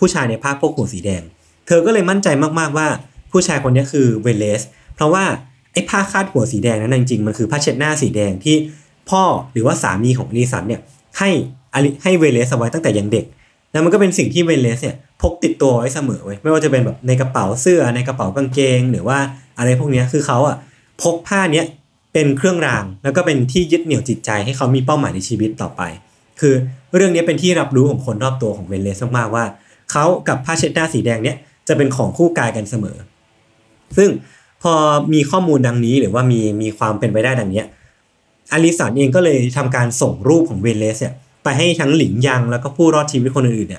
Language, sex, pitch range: Thai, male, 115-155 Hz